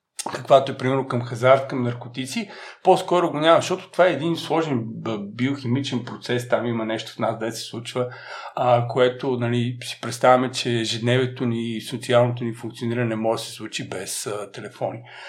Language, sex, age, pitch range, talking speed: Bulgarian, male, 50-69, 120-160 Hz, 175 wpm